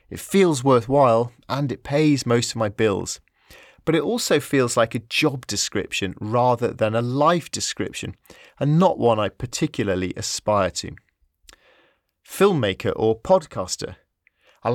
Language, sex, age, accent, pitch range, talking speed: English, male, 30-49, British, 105-135 Hz, 140 wpm